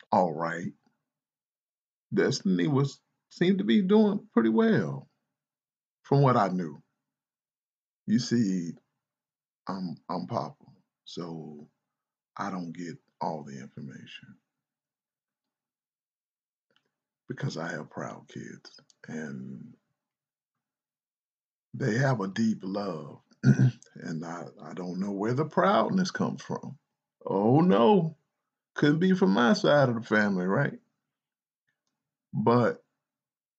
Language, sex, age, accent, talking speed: English, male, 50-69, American, 105 wpm